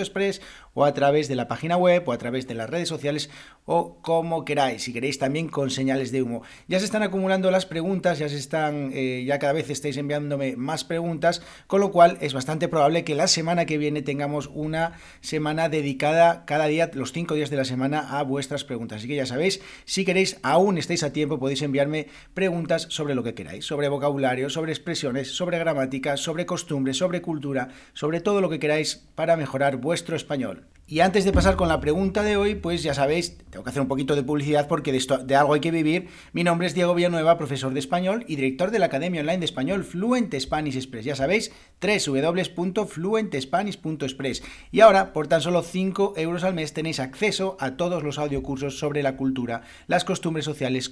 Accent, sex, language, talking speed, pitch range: Spanish, male, Spanish, 205 wpm, 140-175 Hz